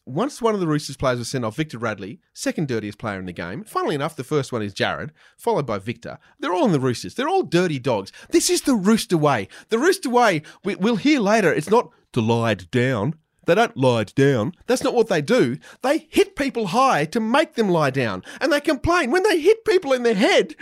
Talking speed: 235 wpm